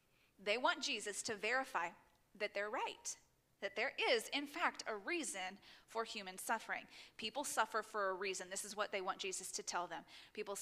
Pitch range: 205-275 Hz